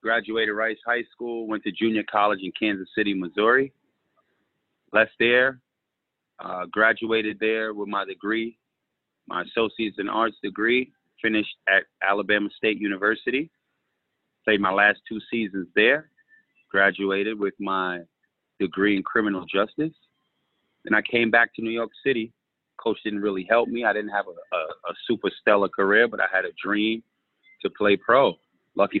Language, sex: English, male